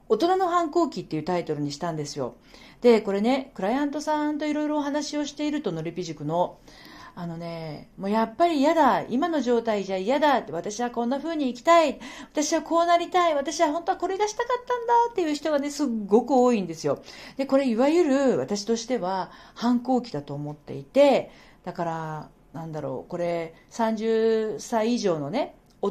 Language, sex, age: Japanese, female, 50-69